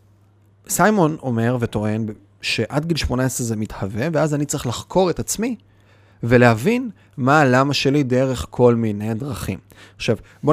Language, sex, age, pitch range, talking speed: Hebrew, male, 20-39, 110-140 Hz, 135 wpm